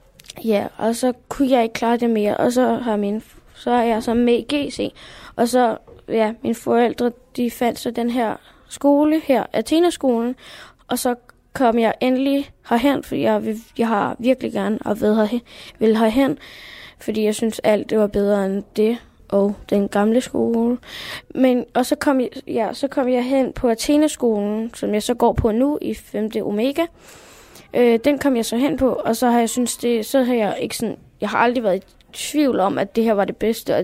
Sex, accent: female, native